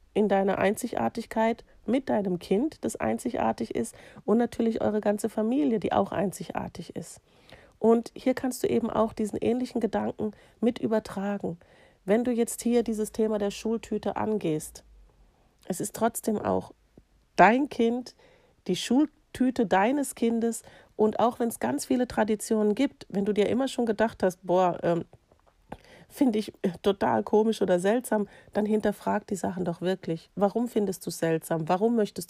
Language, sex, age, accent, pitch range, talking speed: German, female, 40-59, German, 185-230 Hz, 155 wpm